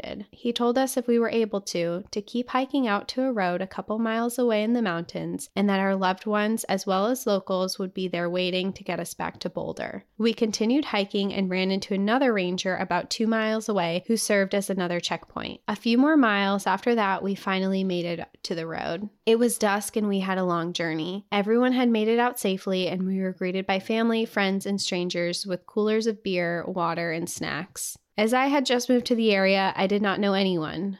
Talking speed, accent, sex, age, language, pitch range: 225 wpm, American, female, 20-39, English, 180-225 Hz